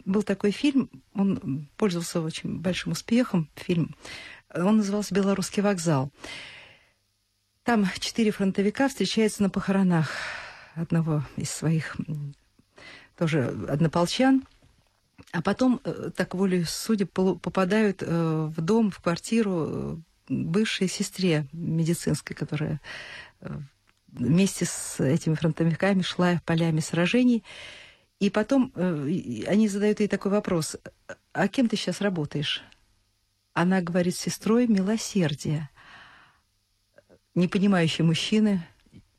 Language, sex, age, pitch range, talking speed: Russian, female, 50-69, 160-215 Hz, 105 wpm